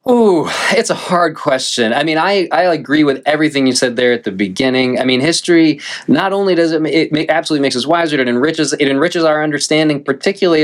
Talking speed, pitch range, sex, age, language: 210 wpm, 115-150 Hz, male, 20-39, English